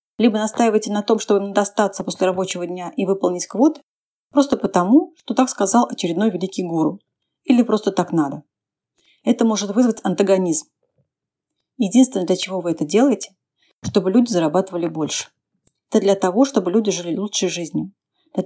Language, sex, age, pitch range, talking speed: Russian, female, 30-49, 185-240 Hz, 155 wpm